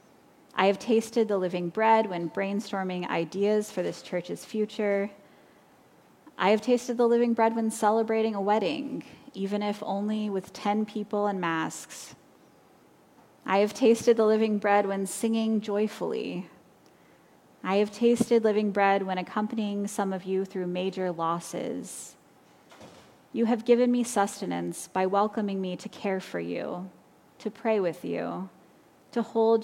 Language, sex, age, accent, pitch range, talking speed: English, female, 20-39, American, 190-225 Hz, 145 wpm